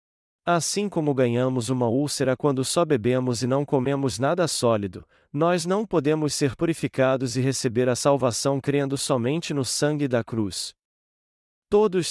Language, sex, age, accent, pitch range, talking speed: Portuguese, male, 40-59, Brazilian, 125-155 Hz, 145 wpm